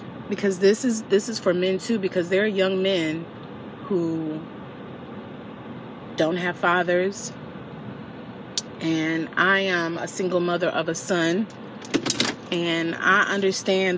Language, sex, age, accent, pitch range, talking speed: English, female, 30-49, American, 170-205 Hz, 125 wpm